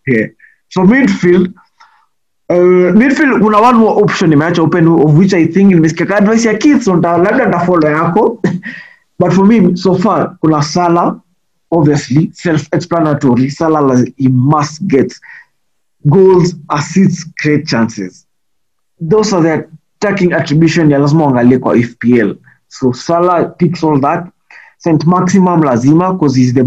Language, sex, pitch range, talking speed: Swahili, male, 145-185 Hz, 120 wpm